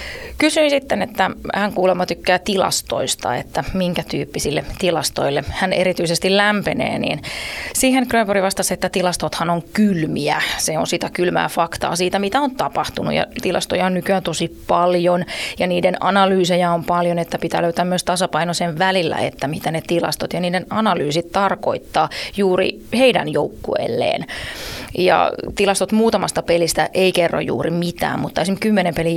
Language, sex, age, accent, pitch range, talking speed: Finnish, female, 20-39, native, 170-205 Hz, 150 wpm